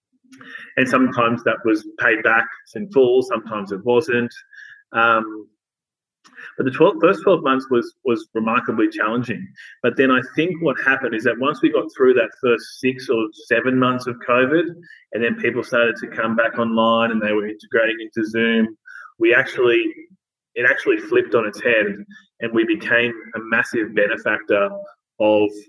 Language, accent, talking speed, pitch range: English, Australian, 165 wpm, 105-165 Hz